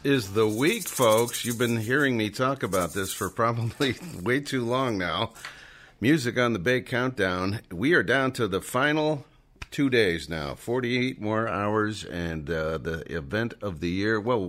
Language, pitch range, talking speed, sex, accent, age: English, 95-130 Hz, 175 wpm, male, American, 50-69